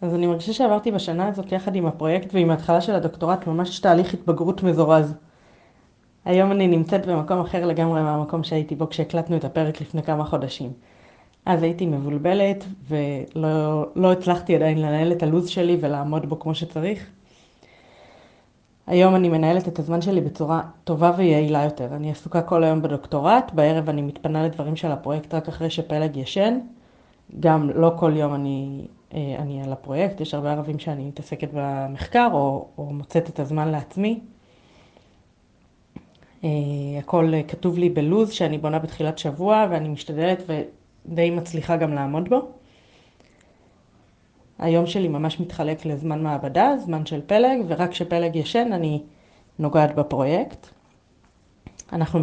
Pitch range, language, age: 150-175 Hz, Hebrew, 20-39